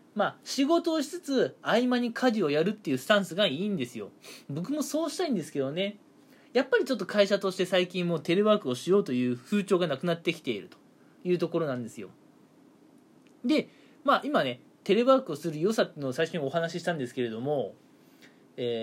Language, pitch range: Japanese, 160-255 Hz